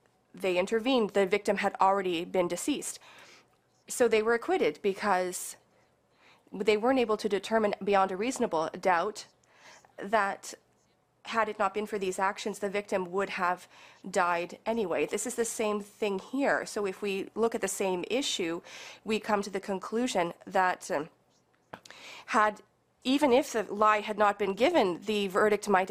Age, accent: 30-49, American